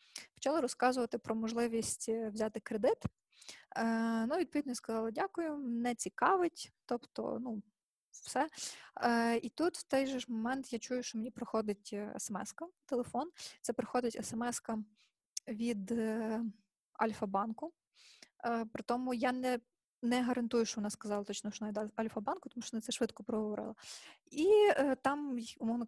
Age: 20-39